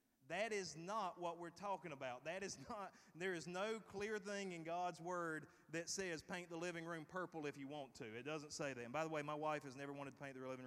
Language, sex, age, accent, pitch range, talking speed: English, male, 30-49, American, 145-190 Hz, 260 wpm